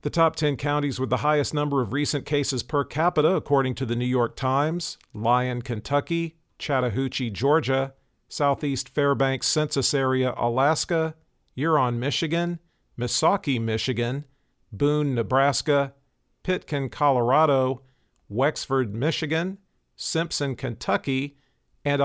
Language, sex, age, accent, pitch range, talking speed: English, male, 50-69, American, 125-150 Hz, 110 wpm